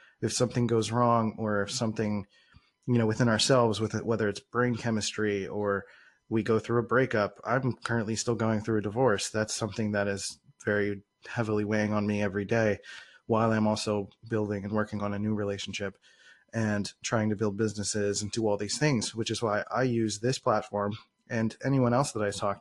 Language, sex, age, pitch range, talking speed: English, male, 30-49, 105-125 Hz, 195 wpm